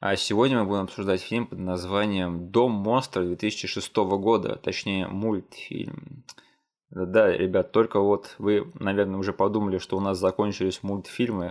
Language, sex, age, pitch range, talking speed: Russian, male, 20-39, 95-110 Hz, 140 wpm